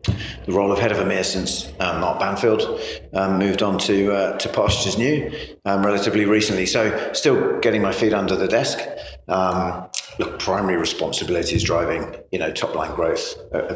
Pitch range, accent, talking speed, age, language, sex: 95-110 Hz, British, 175 wpm, 40-59, English, male